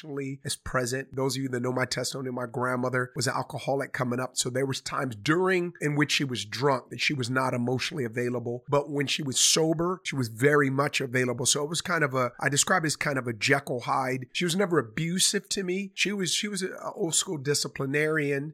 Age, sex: 30-49, male